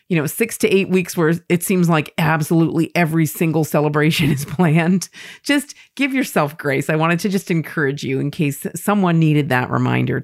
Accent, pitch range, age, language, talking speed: American, 145-185 Hz, 40-59, English, 190 wpm